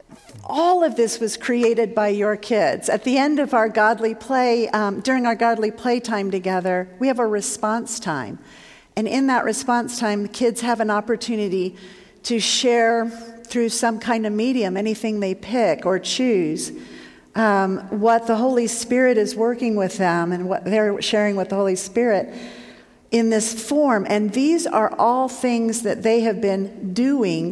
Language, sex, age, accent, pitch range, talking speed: English, female, 50-69, American, 205-245 Hz, 170 wpm